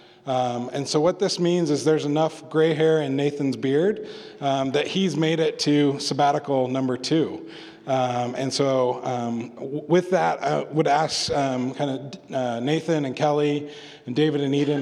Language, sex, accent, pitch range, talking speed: English, male, American, 130-160 Hz, 180 wpm